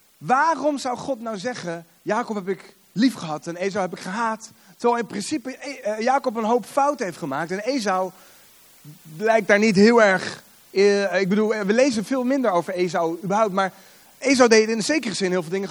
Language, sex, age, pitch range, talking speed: Dutch, male, 30-49, 180-235 Hz, 190 wpm